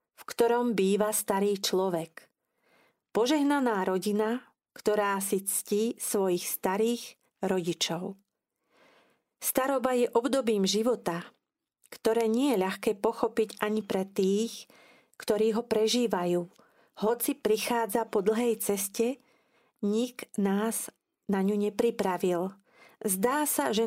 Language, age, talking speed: Slovak, 40-59, 105 wpm